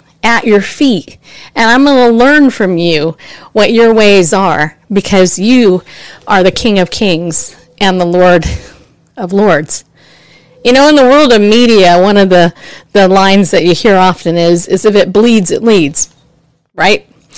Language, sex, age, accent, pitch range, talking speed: English, female, 40-59, American, 180-245 Hz, 175 wpm